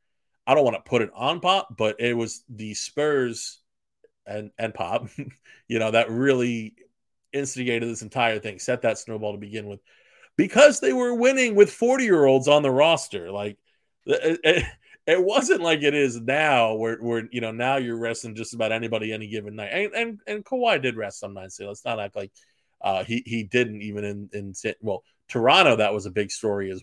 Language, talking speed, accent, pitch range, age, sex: English, 205 wpm, American, 110-140 Hz, 30-49, male